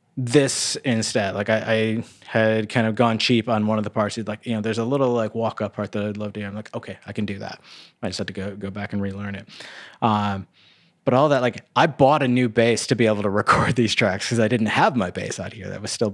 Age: 20-39